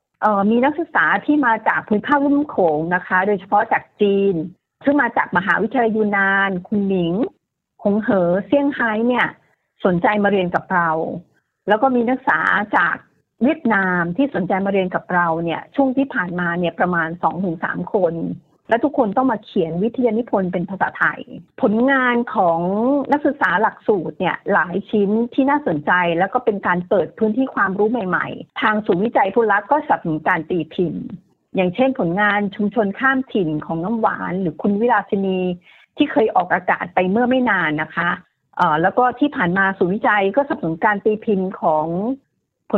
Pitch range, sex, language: 180-250 Hz, female, Thai